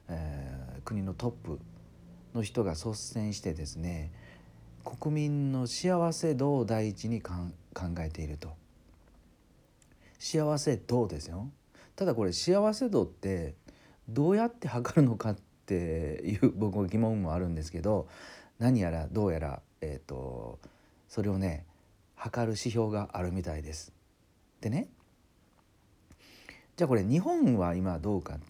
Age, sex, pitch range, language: 40-59, male, 80-120 Hz, Japanese